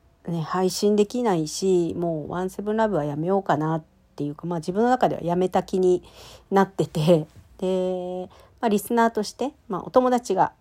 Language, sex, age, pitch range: Japanese, female, 50-69, 155-210 Hz